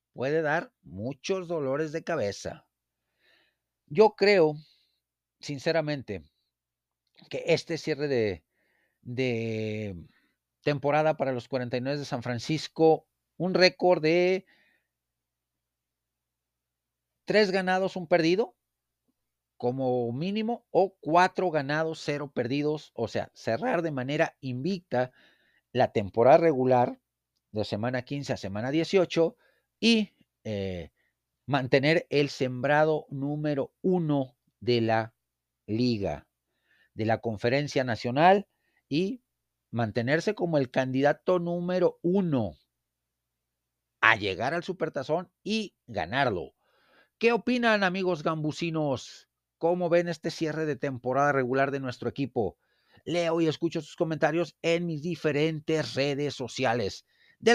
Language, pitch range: Spanish, 115-170 Hz